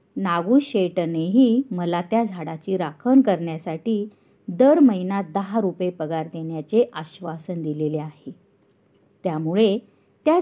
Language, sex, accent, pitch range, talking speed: Marathi, female, native, 175-240 Hz, 85 wpm